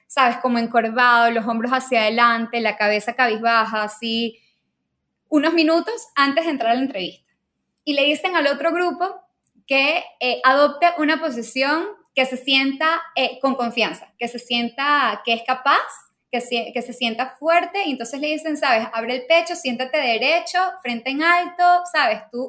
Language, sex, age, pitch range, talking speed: Spanish, female, 10-29, 240-320 Hz, 170 wpm